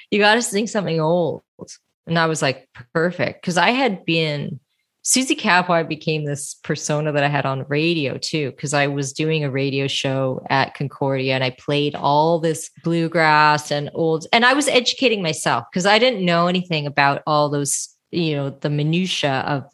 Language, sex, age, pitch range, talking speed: English, female, 30-49, 145-175 Hz, 185 wpm